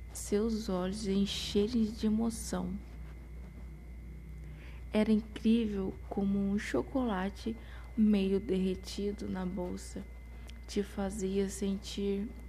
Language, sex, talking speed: Portuguese, female, 80 wpm